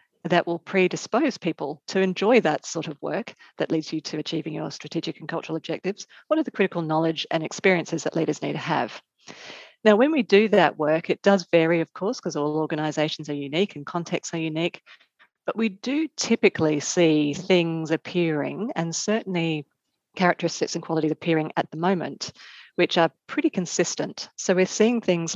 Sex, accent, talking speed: female, Australian, 180 wpm